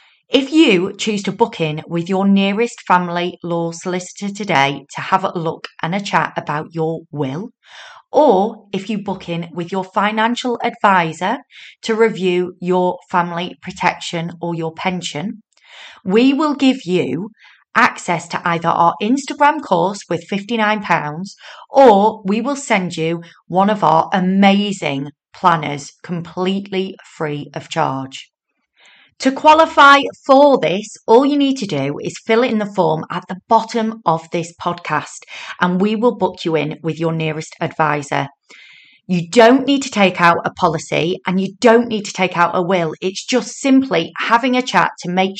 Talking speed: 160 wpm